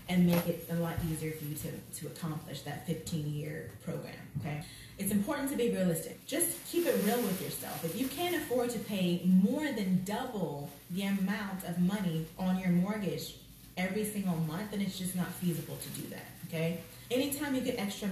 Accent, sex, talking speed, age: American, female, 190 wpm, 30-49